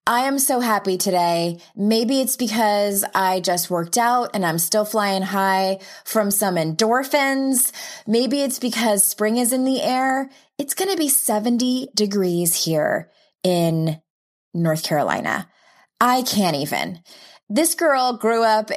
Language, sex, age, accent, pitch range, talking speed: English, female, 20-39, American, 175-255 Hz, 145 wpm